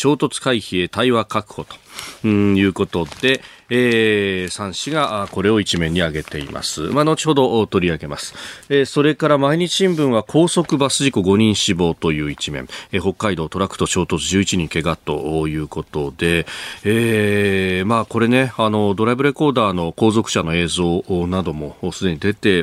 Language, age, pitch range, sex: Japanese, 40-59, 85-110 Hz, male